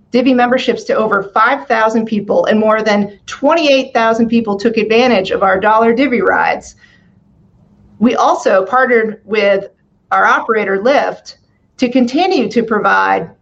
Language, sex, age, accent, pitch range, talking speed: English, female, 40-59, American, 205-255 Hz, 130 wpm